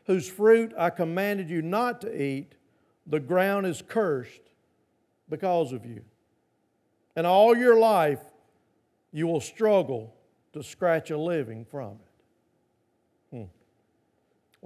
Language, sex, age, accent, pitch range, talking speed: English, male, 50-69, American, 155-200 Hz, 120 wpm